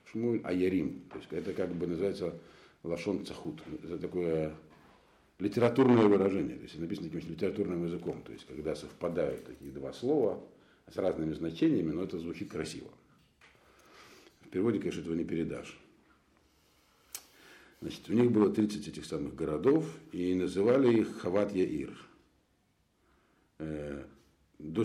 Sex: male